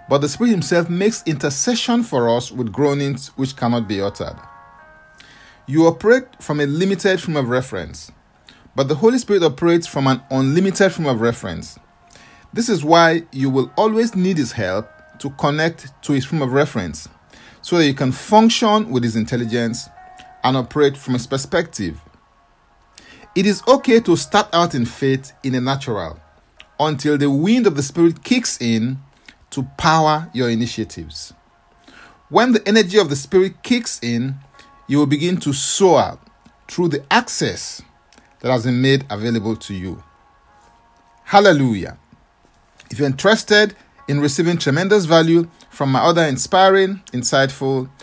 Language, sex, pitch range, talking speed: English, male, 125-175 Hz, 150 wpm